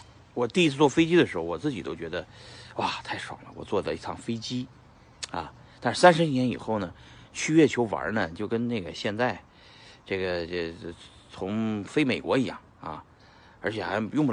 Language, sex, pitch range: Chinese, male, 85-130 Hz